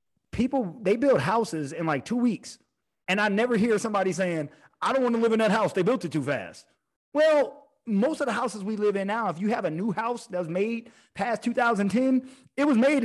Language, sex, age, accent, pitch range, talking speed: English, male, 30-49, American, 170-230 Hz, 230 wpm